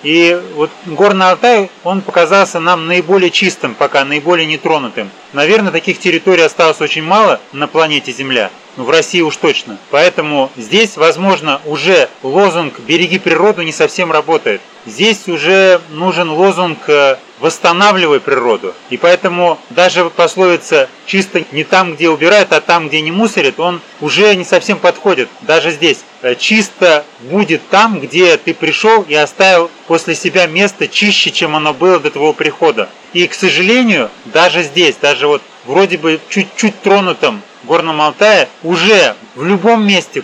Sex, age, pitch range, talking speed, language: male, 30-49, 160-195 Hz, 150 wpm, Russian